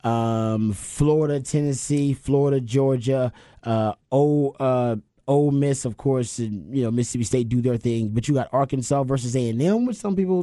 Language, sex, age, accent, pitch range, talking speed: English, male, 30-49, American, 120-150 Hz, 165 wpm